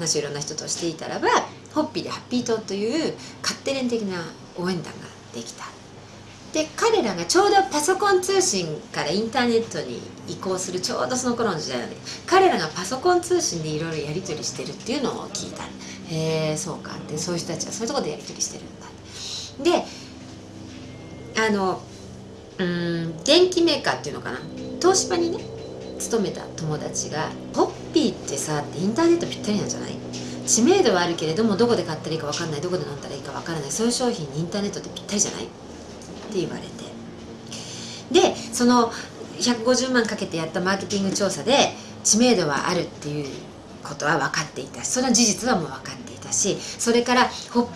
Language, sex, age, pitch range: Japanese, female, 40-59, 155-250 Hz